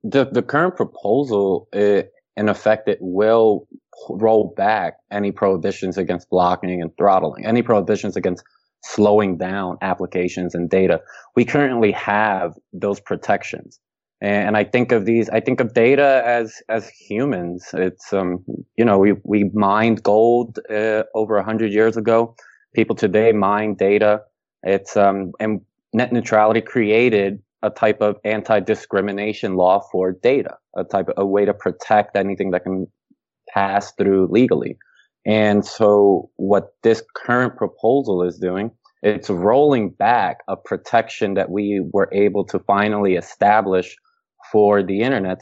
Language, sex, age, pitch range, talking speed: English, male, 20-39, 95-110 Hz, 145 wpm